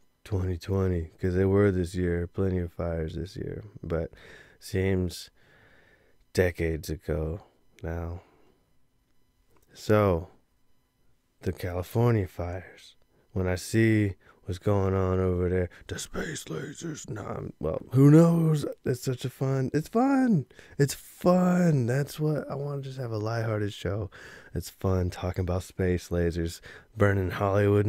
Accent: American